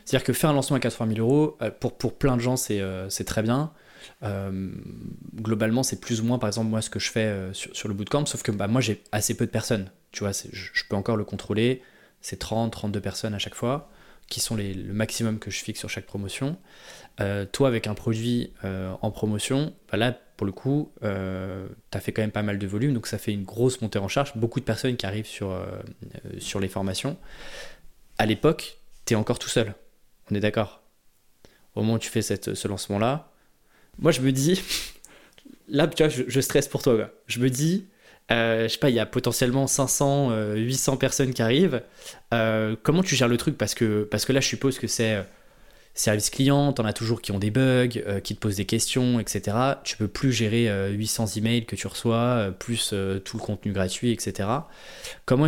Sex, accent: male, French